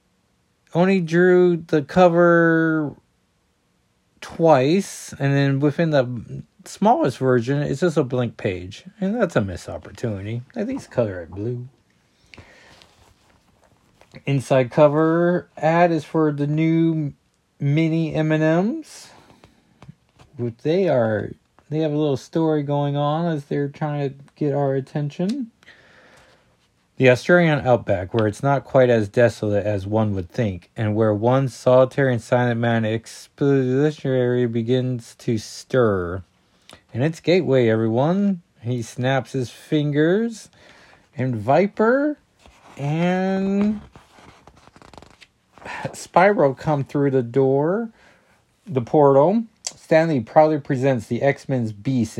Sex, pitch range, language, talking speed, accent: male, 120-160 Hz, English, 115 wpm, American